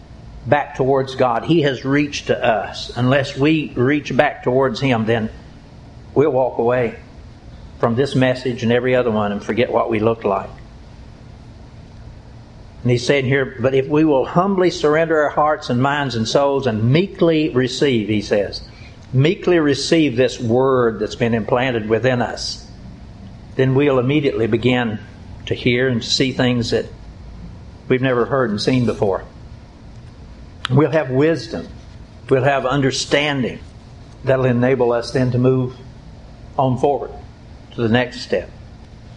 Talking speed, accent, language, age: 145 wpm, American, English, 60-79